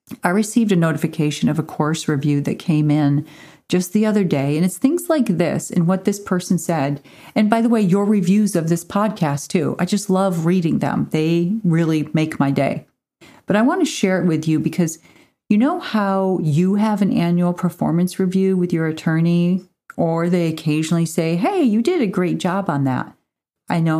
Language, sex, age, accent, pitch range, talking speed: English, female, 40-59, American, 160-210 Hz, 200 wpm